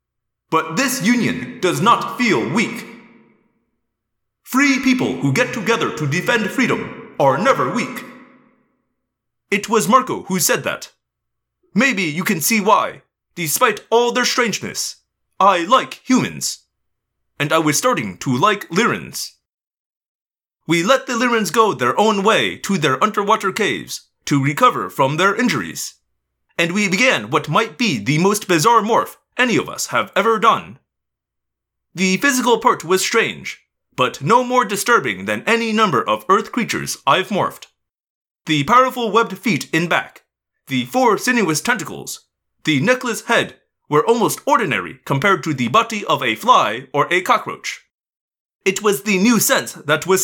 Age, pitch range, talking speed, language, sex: 30-49, 185-245 Hz, 150 wpm, English, male